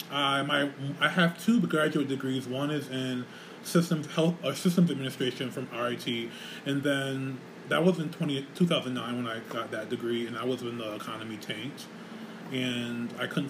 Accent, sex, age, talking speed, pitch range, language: American, male, 20-39, 180 wpm, 125-155 Hz, English